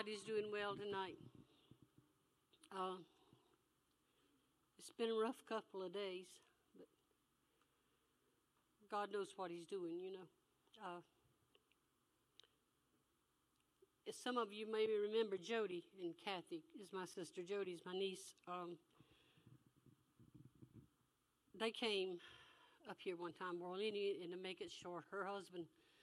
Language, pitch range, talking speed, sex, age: English, 185-225 Hz, 115 wpm, female, 60-79